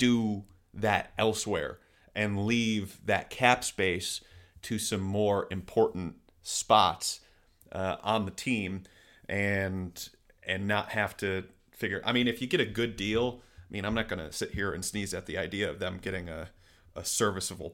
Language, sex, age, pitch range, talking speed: English, male, 30-49, 90-110 Hz, 170 wpm